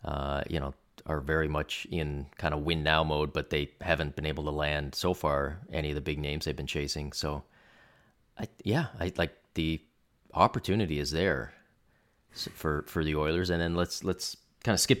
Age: 30-49